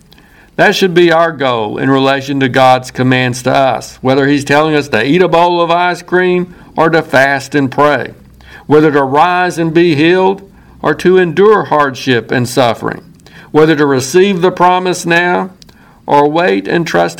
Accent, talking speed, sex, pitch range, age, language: American, 175 wpm, male, 130-170 Hz, 60-79, English